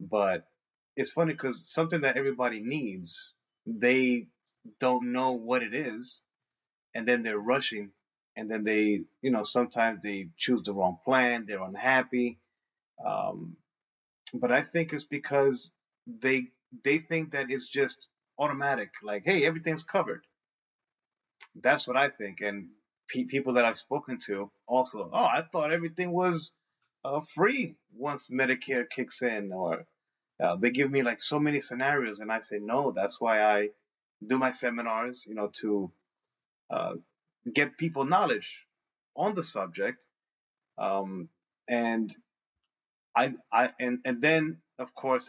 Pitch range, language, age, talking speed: 110-140 Hz, English, 30-49, 145 wpm